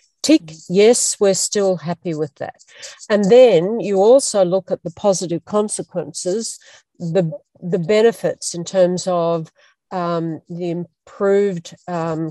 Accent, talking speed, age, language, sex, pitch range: Australian, 125 wpm, 50-69, English, female, 180-245 Hz